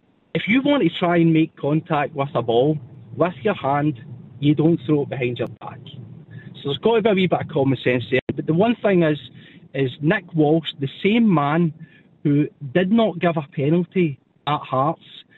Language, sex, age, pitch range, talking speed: English, male, 40-59, 145-180 Hz, 205 wpm